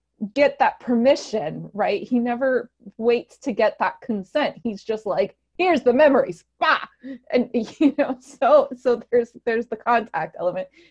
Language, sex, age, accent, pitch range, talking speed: English, female, 20-39, American, 190-245 Hz, 155 wpm